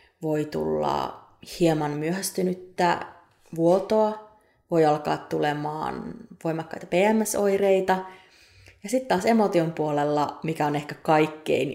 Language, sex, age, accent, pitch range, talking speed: Finnish, female, 30-49, native, 150-185 Hz, 95 wpm